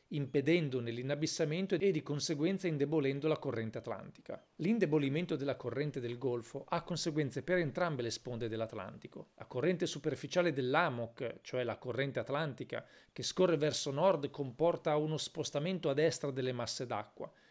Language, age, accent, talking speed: Italian, 40-59, native, 140 wpm